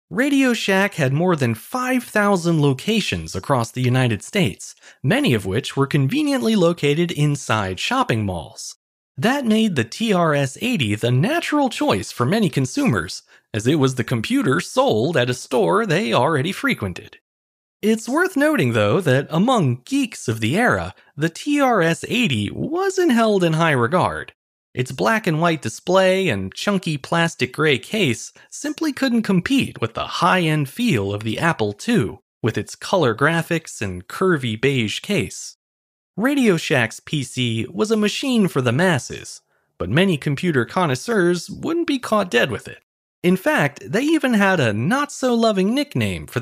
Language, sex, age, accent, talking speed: English, male, 30-49, American, 145 wpm